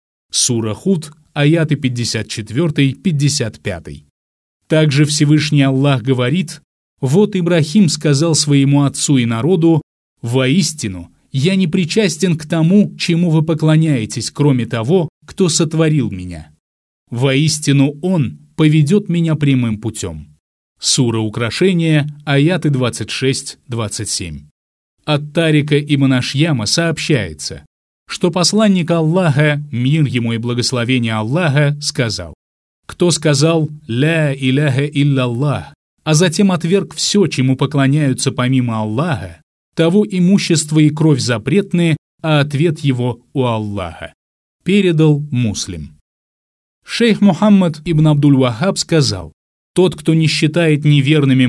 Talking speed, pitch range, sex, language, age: 105 wpm, 120-165 Hz, male, Russian, 20-39